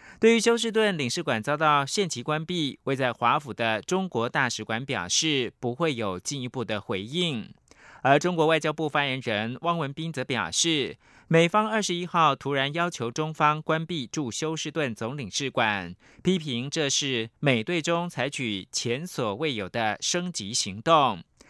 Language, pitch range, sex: German, 120-165 Hz, male